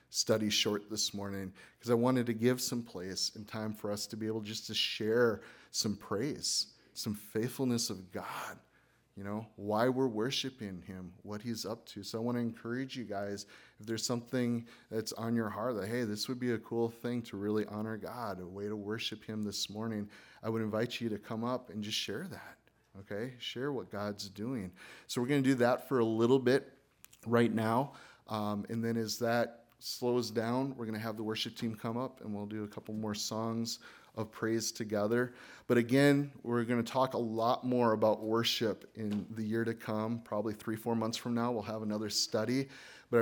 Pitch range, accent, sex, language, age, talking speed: 105-120 Hz, American, male, English, 30-49, 210 wpm